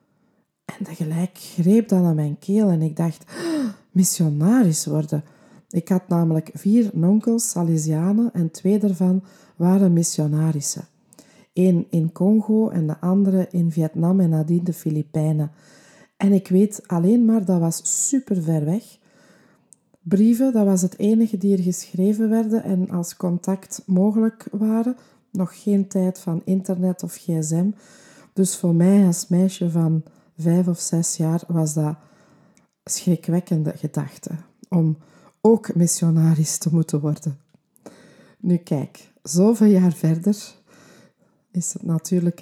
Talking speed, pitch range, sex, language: 135 wpm, 165-200 Hz, female, Dutch